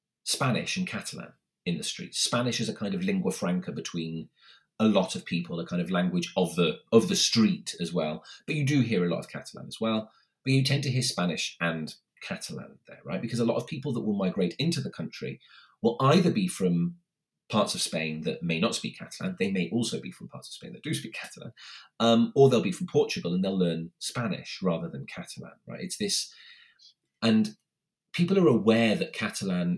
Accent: British